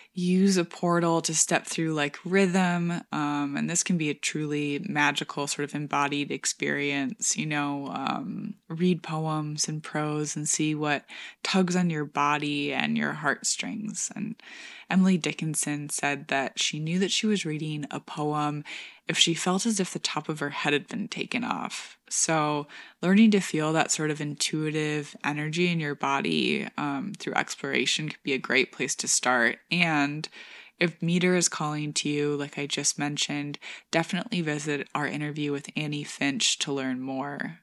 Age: 20-39